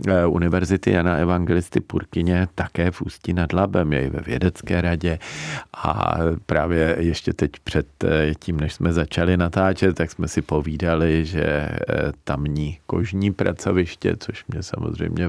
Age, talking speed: 40-59, 135 wpm